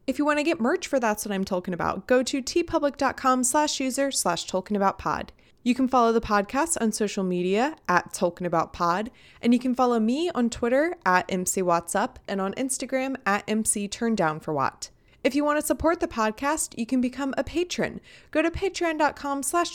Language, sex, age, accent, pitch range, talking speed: English, female, 20-39, American, 190-275 Hz, 185 wpm